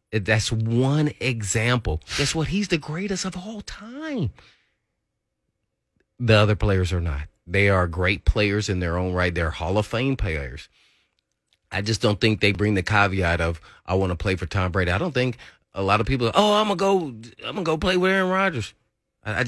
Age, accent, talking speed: 30-49, American, 195 wpm